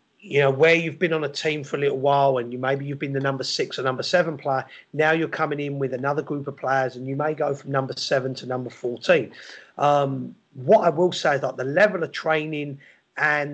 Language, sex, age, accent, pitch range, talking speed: English, male, 30-49, British, 135-170 Hz, 245 wpm